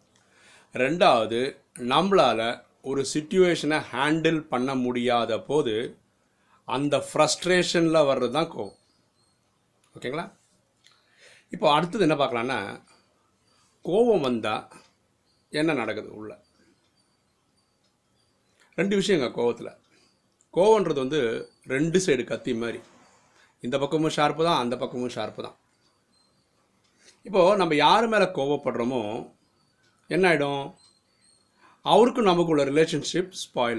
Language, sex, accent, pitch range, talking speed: Tamil, male, native, 125-165 Hz, 90 wpm